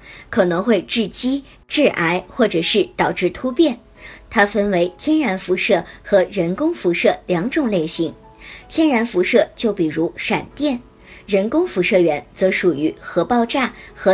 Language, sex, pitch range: Chinese, male, 180-260 Hz